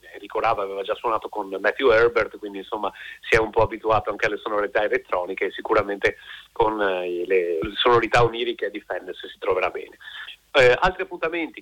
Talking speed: 165 wpm